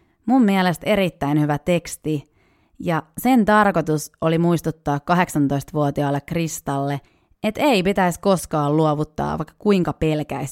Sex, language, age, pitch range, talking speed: female, Finnish, 30-49, 150-195 Hz, 115 wpm